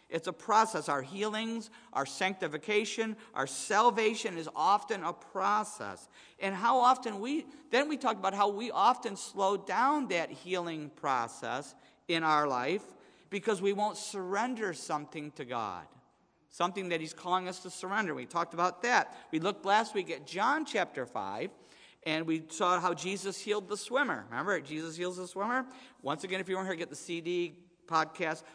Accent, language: American, English